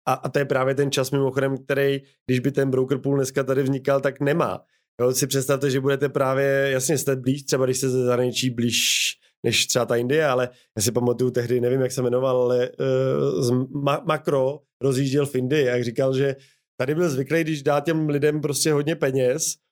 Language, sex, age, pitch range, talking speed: Czech, male, 20-39, 130-150 Hz, 205 wpm